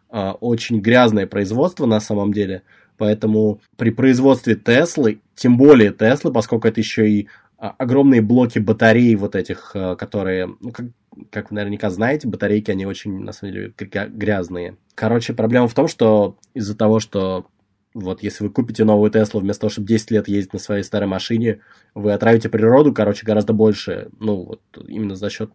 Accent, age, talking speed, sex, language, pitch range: native, 20-39, 165 wpm, male, Russian, 100-115 Hz